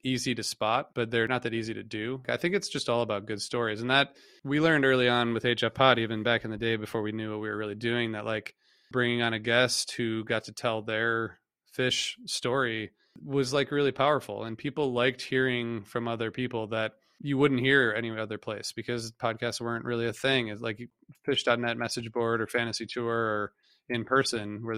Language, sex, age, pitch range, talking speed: English, male, 20-39, 110-130 Hz, 215 wpm